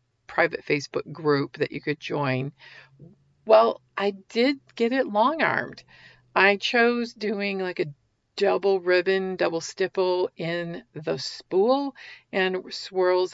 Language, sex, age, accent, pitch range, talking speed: English, female, 50-69, American, 155-205 Hz, 125 wpm